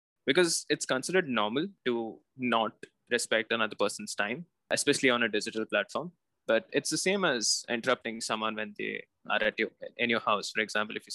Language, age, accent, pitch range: English, 20-39, Indian, 115-135 Hz